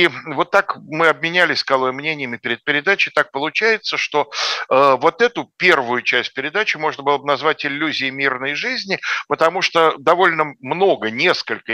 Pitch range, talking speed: 125-165 Hz, 150 wpm